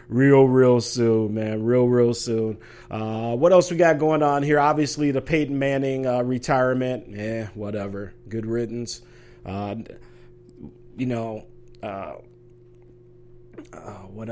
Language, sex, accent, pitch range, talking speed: English, male, American, 115-140 Hz, 130 wpm